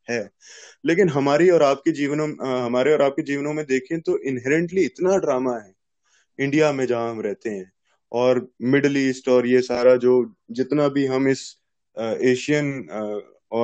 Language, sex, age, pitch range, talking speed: Hindi, male, 20-39, 120-150 Hz, 140 wpm